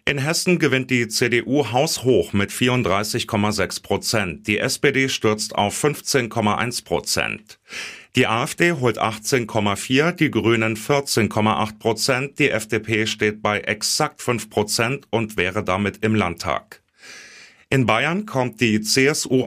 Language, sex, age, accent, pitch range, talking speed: German, male, 30-49, German, 105-135 Hz, 125 wpm